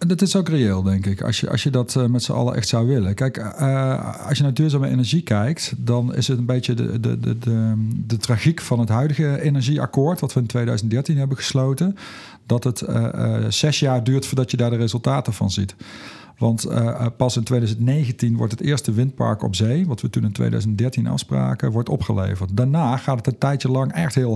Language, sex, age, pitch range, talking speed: Dutch, male, 50-69, 110-135 Hz, 205 wpm